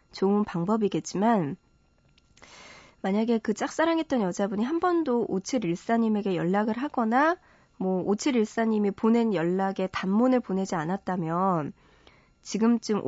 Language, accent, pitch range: Korean, native, 180-245 Hz